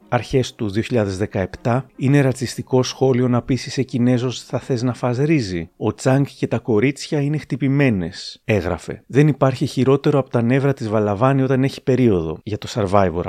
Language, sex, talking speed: Greek, male, 165 wpm